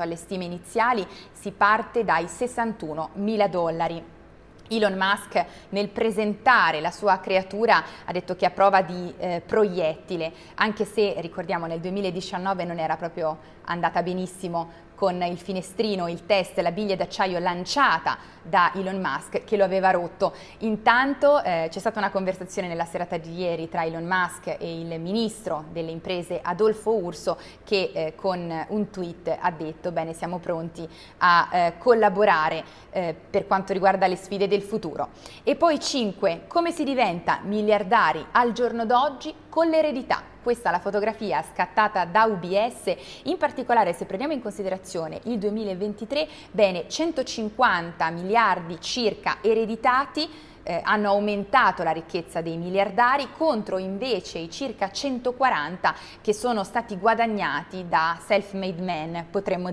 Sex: female